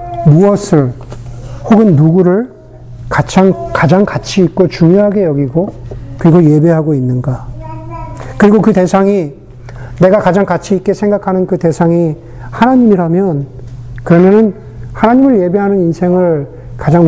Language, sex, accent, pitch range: Korean, male, native, 125-195 Hz